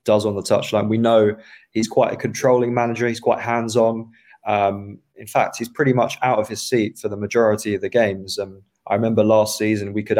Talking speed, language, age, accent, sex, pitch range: 225 wpm, English, 20-39, British, male, 105-120 Hz